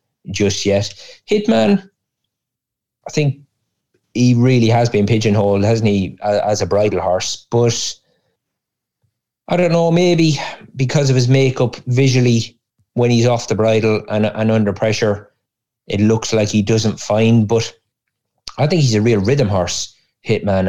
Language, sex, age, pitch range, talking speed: English, male, 30-49, 100-120 Hz, 145 wpm